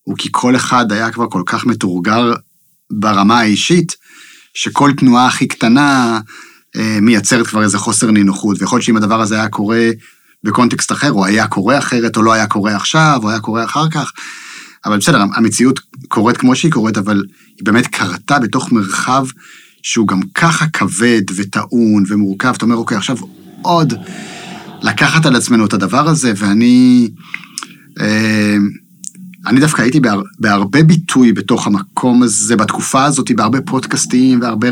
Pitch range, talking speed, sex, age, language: 110-130 Hz, 155 wpm, male, 30-49, Hebrew